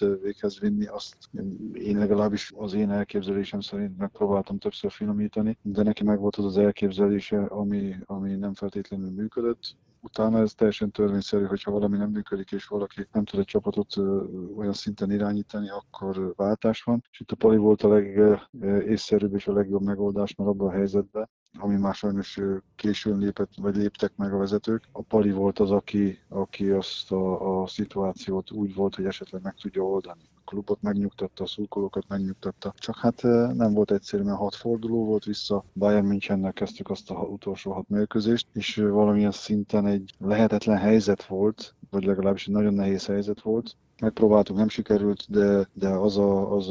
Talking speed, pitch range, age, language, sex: 170 wpm, 100-105 Hz, 20-39, English, male